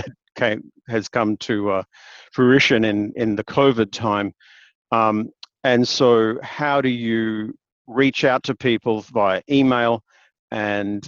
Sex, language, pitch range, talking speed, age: male, English, 105-125 Hz, 125 wpm, 50-69